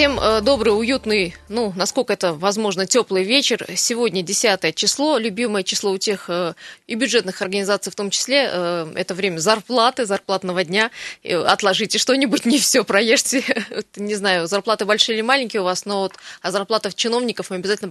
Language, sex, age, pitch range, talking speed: Russian, female, 20-39, 195-245 Hz, 160 wpm